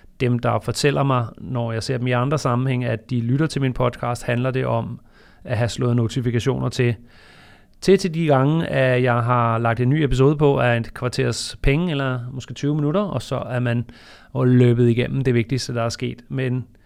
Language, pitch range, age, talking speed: Danish, 120-135 Hz, 30-49, 205 wpm